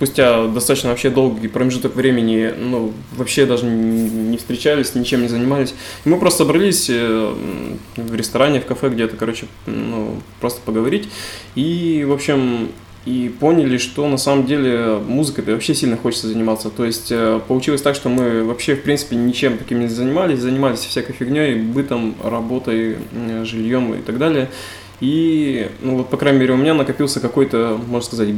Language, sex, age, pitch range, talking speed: Russian, male, 20-39, 115-135 Hz, 155 wpm